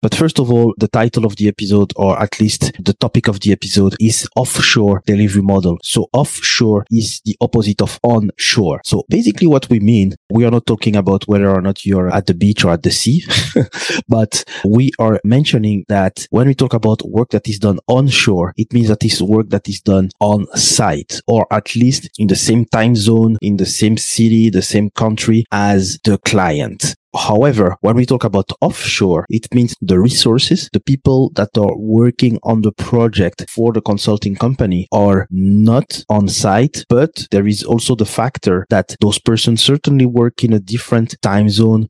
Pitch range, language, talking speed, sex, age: 100-115 Hz, English, 190 wpm, male, 30-49